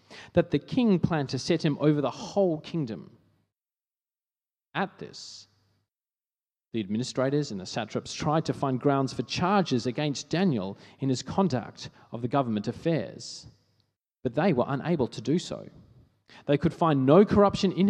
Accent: Australian